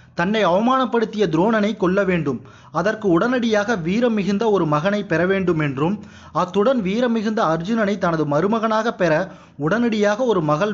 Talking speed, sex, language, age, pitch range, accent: 135 wpm, male, Tamil, 30-49, 165-225 Hz, native